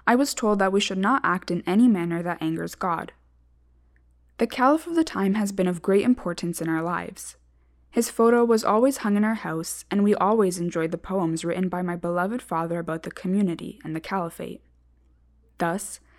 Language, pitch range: English, 160-205 Hz